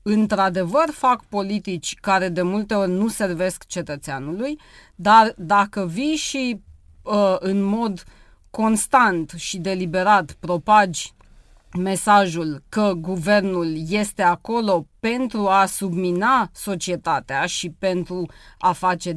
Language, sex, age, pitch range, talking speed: Romanian, female, 30-49, 185-230 Hz, 105 wpm